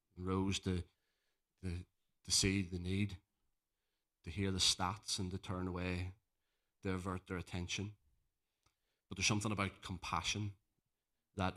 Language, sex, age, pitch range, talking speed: English, male, 30-49, 95-105 Hz, 130 wpm